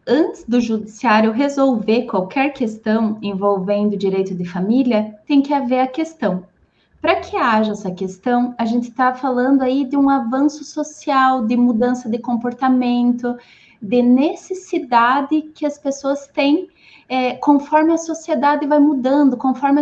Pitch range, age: 235-310 Hz, 20-39